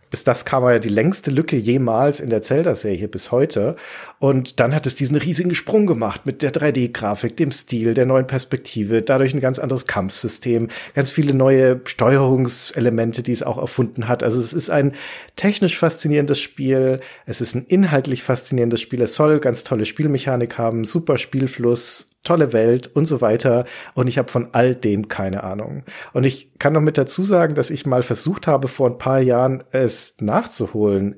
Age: 40-59